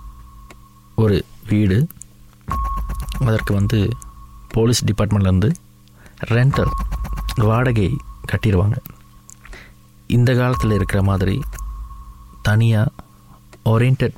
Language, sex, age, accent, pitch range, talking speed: Tamil, male, 30-49, native, 90-120 Hz, 65 wpm